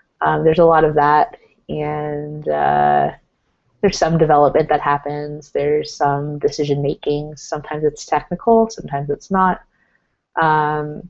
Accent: American